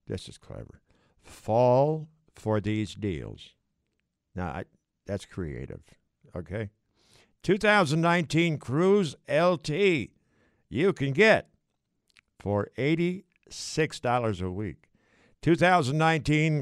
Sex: male